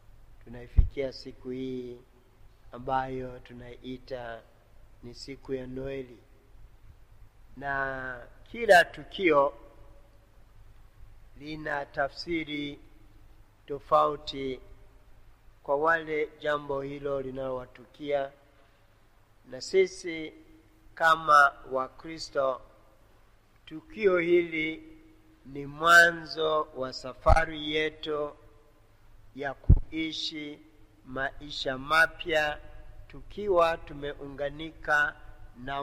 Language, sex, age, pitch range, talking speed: Swahili, male, 50-69, 115-150 Hz, 65 wpm